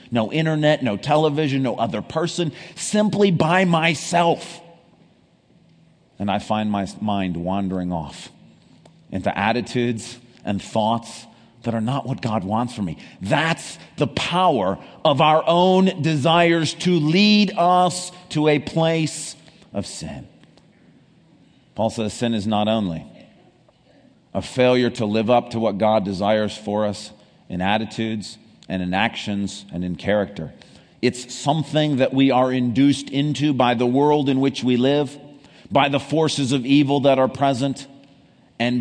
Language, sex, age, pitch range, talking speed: English, male, 40-59, 115-165 Hz, 140 wpm